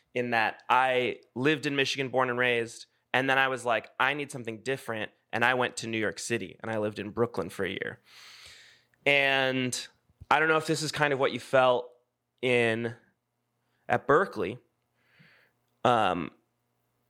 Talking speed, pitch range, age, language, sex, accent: 170 wpm, 115-135 Hz, 20-39, English, male, American